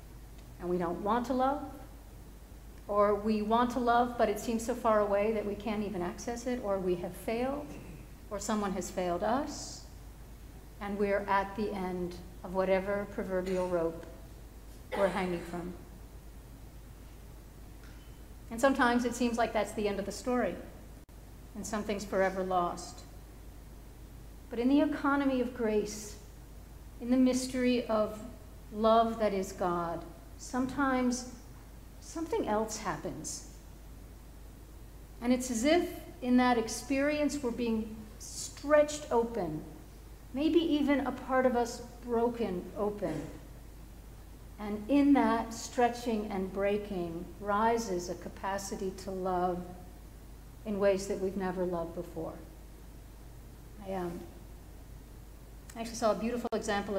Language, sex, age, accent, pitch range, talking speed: English, female, 50-69, American, 185-240 Hz, 130 wpm